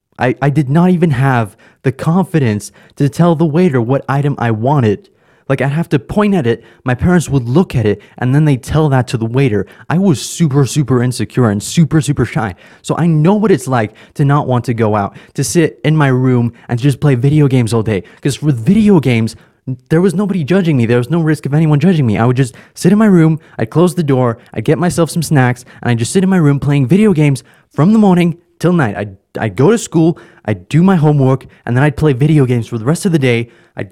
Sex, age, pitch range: male, 20-39, 125-170 Hz